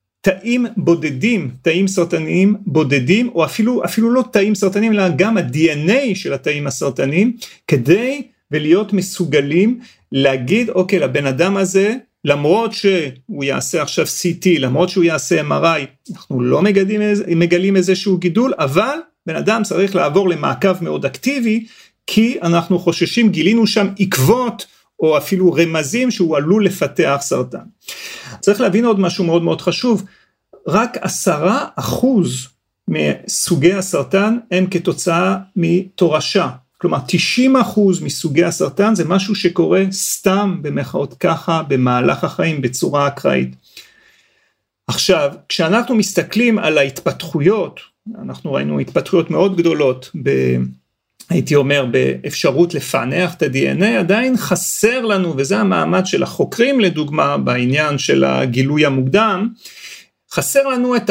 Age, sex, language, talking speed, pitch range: 40-59, male, Hebrew, 120 wpm, 155-210 Hz